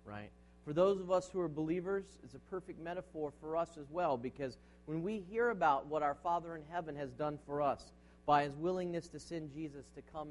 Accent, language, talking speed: American, English, 220 wpm